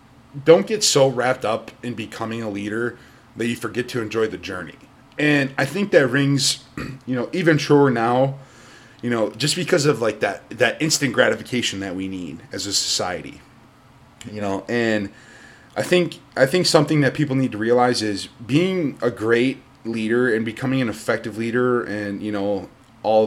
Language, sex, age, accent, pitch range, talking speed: English, male, 20-39, American, 110-135 Hz, 180 wpm